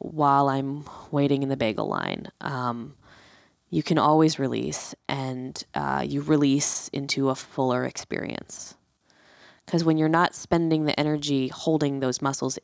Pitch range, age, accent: 135-160 Hz, 20-39, American